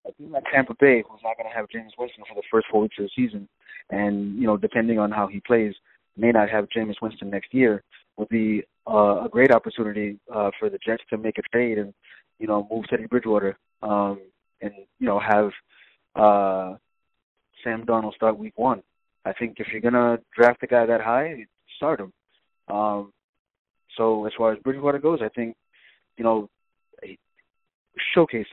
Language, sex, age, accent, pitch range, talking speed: English, male, 20-39, American, 105-125 Hz, 195 wpm